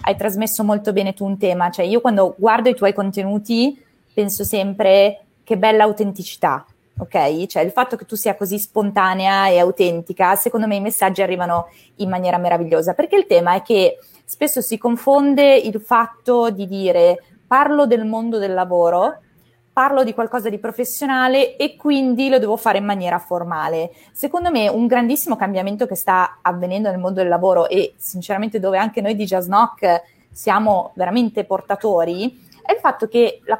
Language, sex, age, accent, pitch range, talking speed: Italian, female, 20-39, native, 185-240 Hz, 170 wpm